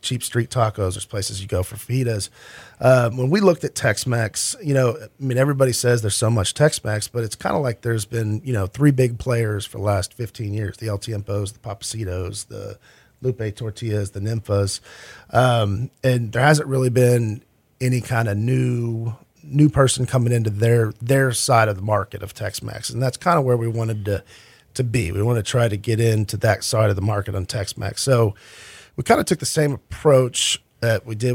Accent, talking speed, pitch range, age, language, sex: American, 210 wpm, 105-125 Hz, 40-59, English, male